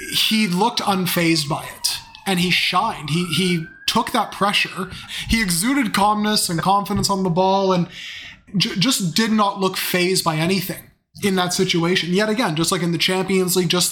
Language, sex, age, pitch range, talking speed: English, male, 20-39, 170-200 Hz, 180 wpm